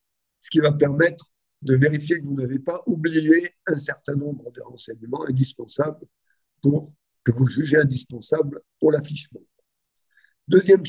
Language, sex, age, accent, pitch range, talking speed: French, male, 50-69, French, 135-165 Hz, 140 wpm